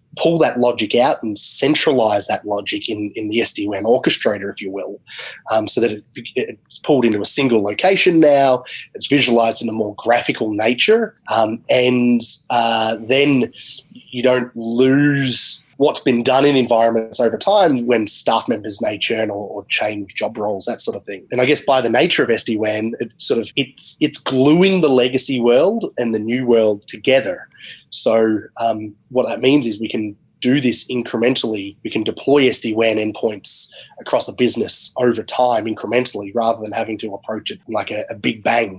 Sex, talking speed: male, 180 wpm